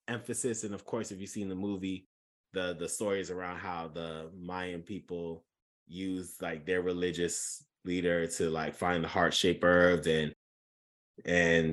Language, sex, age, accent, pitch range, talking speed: English, male, 20-39, American, 90-140 Hz, 160 wpm